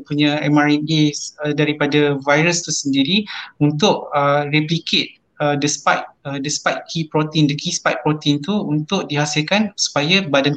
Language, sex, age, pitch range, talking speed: English, male, 20-39, 145-155 Hz, 135 wpm